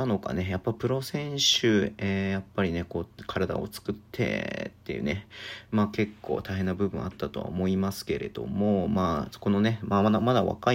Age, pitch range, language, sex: 40-59, 95-110 Hz, Japanese, male